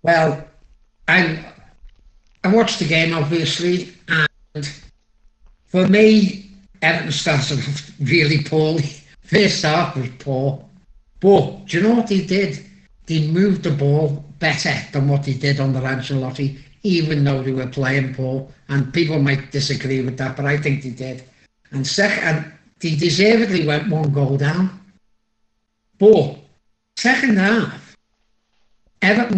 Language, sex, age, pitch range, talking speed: English, male, 60-79, 140-205 Hz, 140 wpm